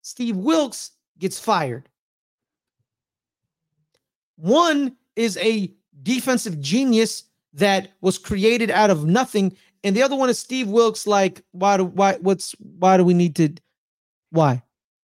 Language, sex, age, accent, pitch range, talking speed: English, male, 30-49, American, 170-225 Hz, 130 wpm